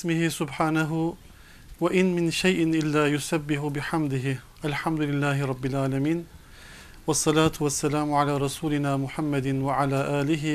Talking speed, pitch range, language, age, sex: 120 wpm, 140-165 Hz, Turkish, 40-59, male